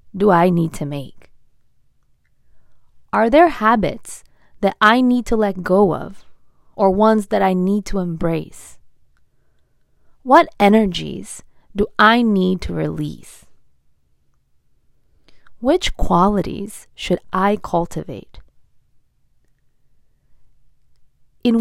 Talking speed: 95 wpm